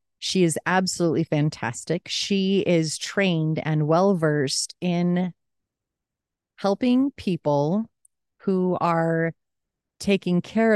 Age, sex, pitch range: 30-49, female, 150-190 Hz